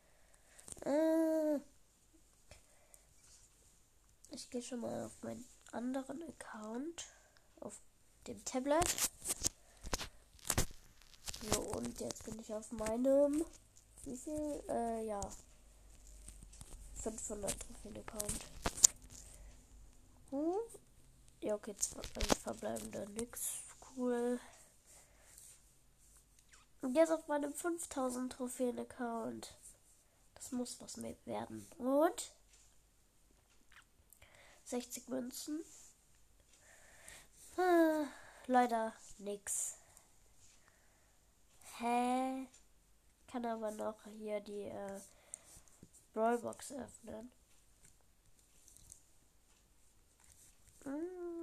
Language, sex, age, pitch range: German, female, 10-29, 215-290 Hz